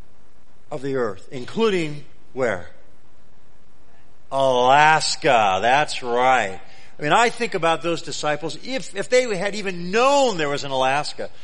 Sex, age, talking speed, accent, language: male, 40-59, 130 wpm, American, English